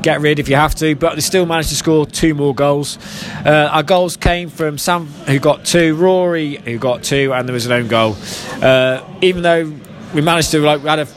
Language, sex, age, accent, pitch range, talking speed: English, male, 20-39, British, 145-170 Hz, 235 wpm